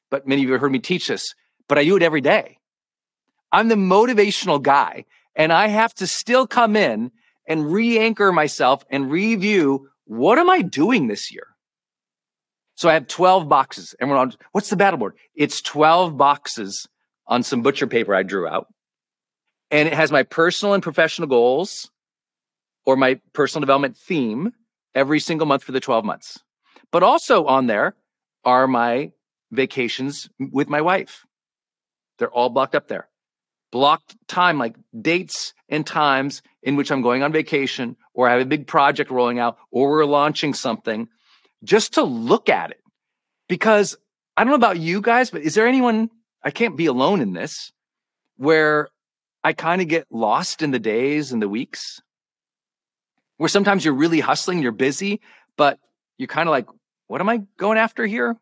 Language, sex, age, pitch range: English, male, 40-59, 140-210 Hz